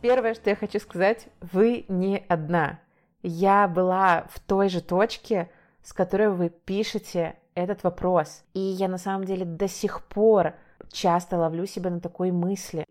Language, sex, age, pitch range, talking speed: Russian, female, 20-39, 180-225 Hz, 160 wpm